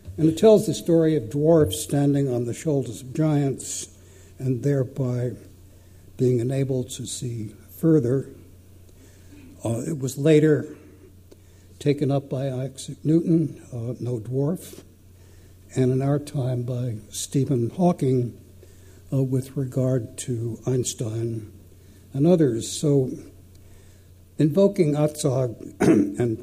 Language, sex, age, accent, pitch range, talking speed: English, male, 60-79, American, 95-140 Hz, 115 wpm